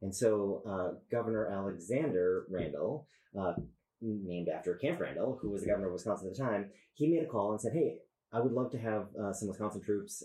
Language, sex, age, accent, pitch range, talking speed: English, male, 30-49, American, 95-115 Hz, 210 wpm